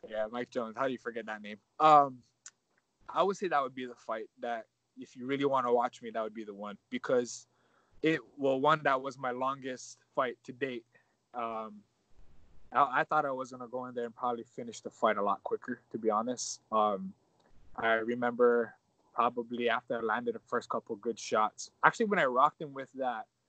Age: 20-39